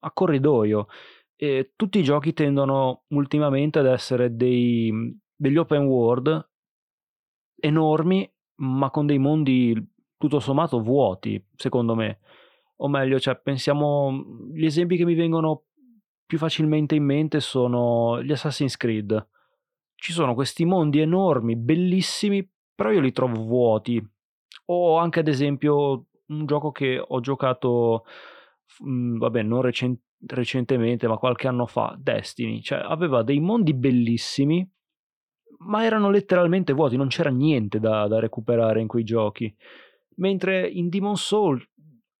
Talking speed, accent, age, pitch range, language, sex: 130 wpm, native, 30-49, 125-160 Hz, Italian, male